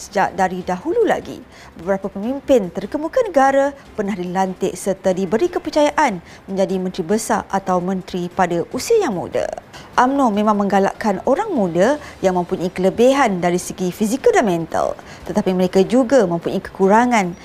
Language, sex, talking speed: Malay, female, 140 wpm